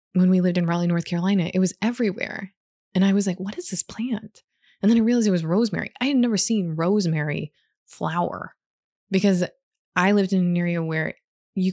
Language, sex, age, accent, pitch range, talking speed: English, female, 20-39, American, 170-205 Hz, 200 wpm